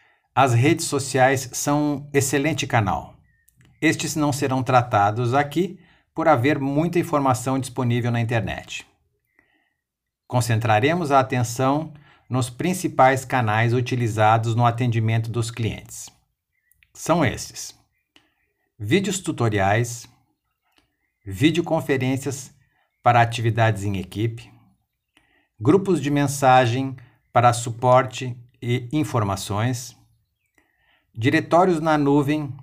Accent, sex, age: Brazilian, male, 60-79